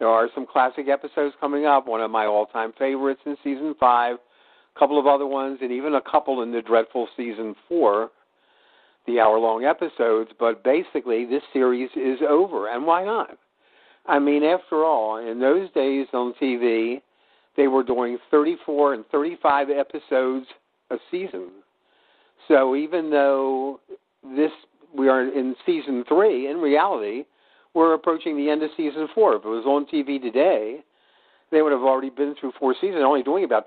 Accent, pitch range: American, 125-150 Hz